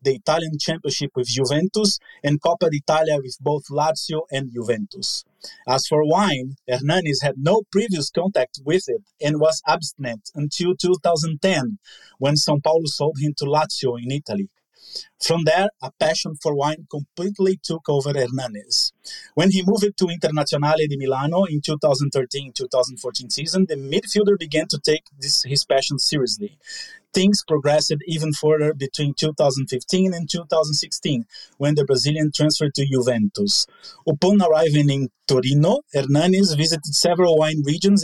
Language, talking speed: English, 140 wpm